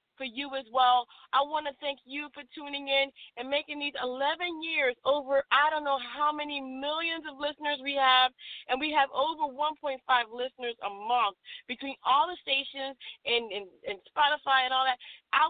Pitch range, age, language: 255-315 Hz, 30-49, English